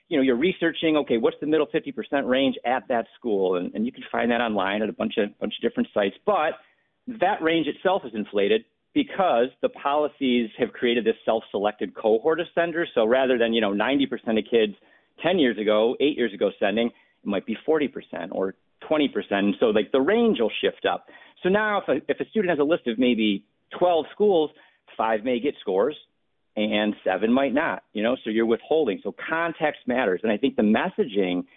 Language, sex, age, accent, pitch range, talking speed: English, male, 40-59, American, 110-175 Hz, 205 wpm